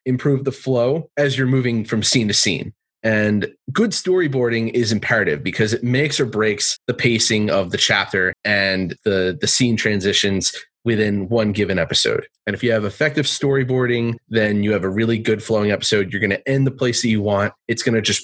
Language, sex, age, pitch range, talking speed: English, male, 30-49, 105-130 Hz, 200 wpm